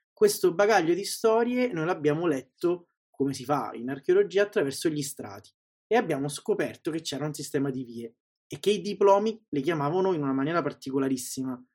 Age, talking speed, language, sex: 20-39, 175 wpm, Italian, male